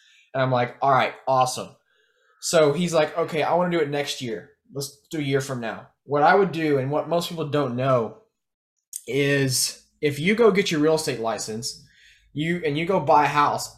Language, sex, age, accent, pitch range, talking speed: English, male, 20-39, American, 130-170 Hz, 210 wpm